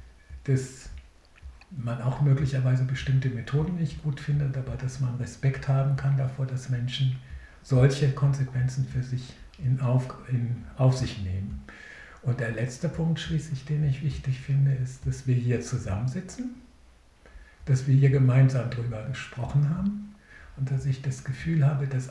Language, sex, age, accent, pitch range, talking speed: German, male, 60-79, German, 130-150 Hz, 150 wpm